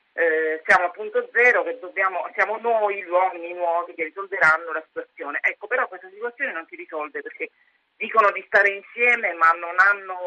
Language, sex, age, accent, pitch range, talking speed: Italian, female, 40-59, native, 165-275 Hz, 180 wpm